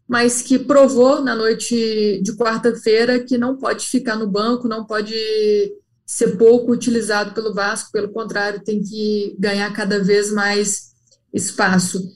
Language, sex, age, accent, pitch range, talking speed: Portuguese, female, 20-39, Brazilian, 210-245 Hz, 145 wpm